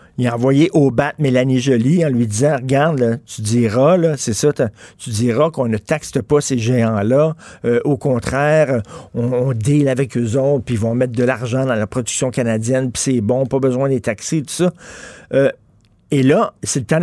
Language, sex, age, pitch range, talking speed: French, male, 50-69, 130-165 Hz, 200 wpm